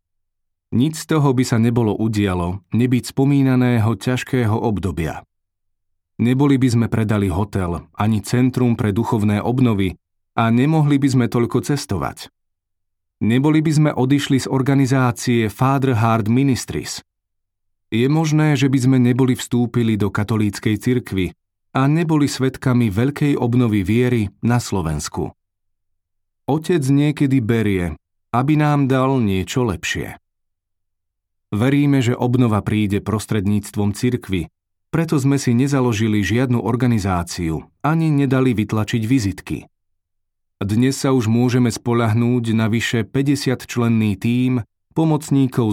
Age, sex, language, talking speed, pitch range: 30-49, male, Slovak, 115 wpm, 100-130 Hz